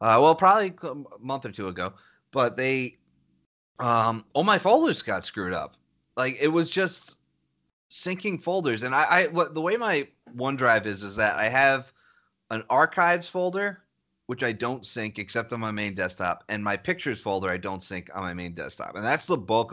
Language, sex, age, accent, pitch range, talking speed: English, male, 30-49, American, 105-160 Hz, 190 wpm